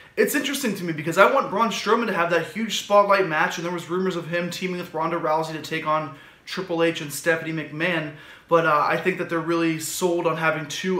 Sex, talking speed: male, 240 wpm